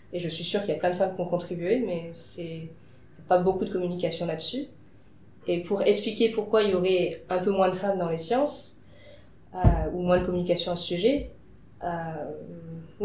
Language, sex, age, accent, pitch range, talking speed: French, female, 20-39, French, 170-190 Hz, 210 wpm